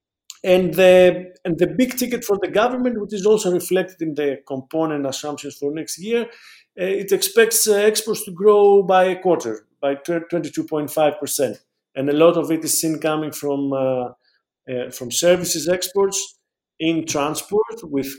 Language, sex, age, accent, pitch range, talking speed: English, male, 50-69, Argentinian, 140-185 Hz, 155 wpm